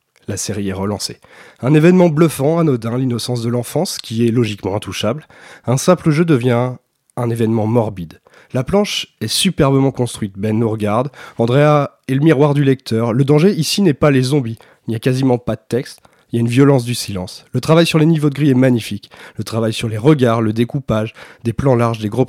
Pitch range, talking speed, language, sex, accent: 115-150 Hz, 210 wpm, French, male, French